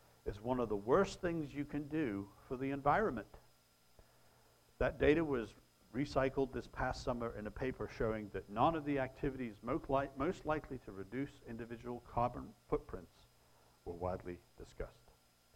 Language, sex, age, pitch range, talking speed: English, male, 60-79, 95-140 Hz, 145 wpm